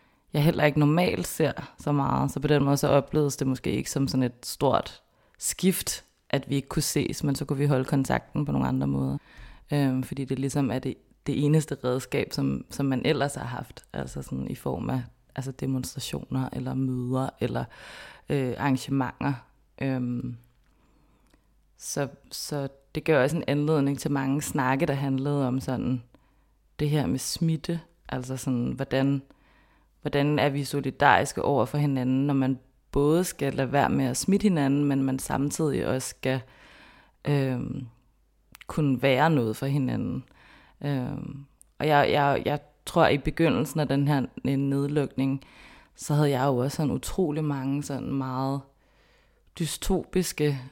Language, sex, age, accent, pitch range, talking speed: Danish, female, 30-49, native, 130-145 Hz, 160 wpm